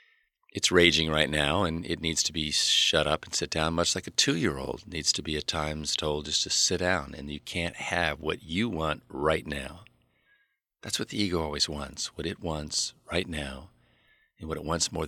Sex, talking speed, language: male, 210 wpm, English